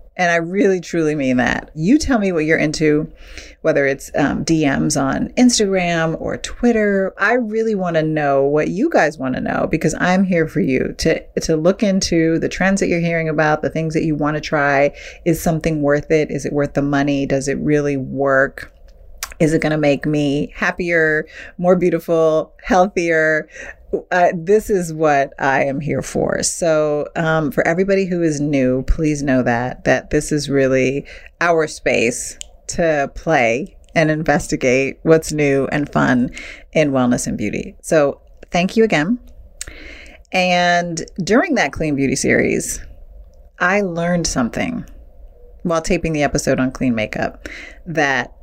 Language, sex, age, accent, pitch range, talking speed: English, female, 30-49, American, 140-180 Hz, 160 wpm